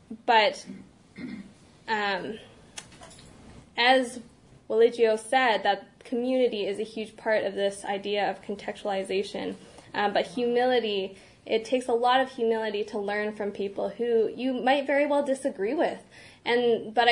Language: English